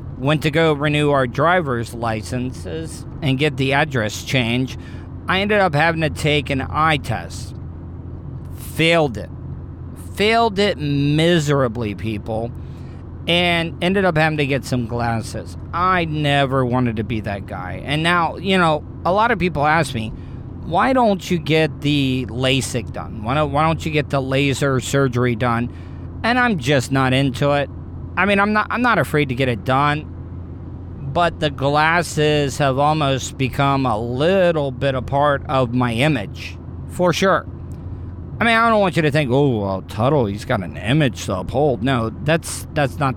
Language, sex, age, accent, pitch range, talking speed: English, male, 40-59, American, 110-150 Hz, 165 wpm